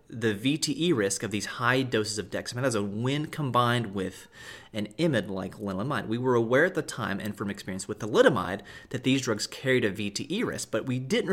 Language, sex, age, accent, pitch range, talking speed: English, male, 30-49, American, 100-125 Hz, 190 wpm